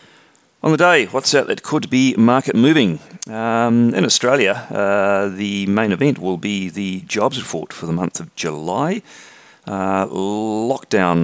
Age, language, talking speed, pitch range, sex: 40-59, English, 155 wpm, 85-105 Hz, male